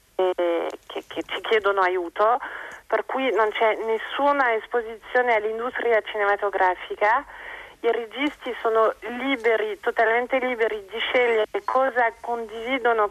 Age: 40-59